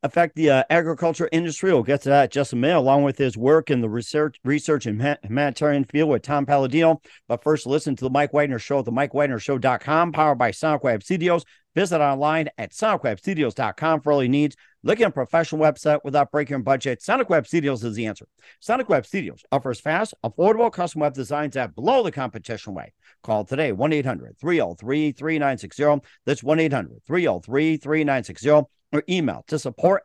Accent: American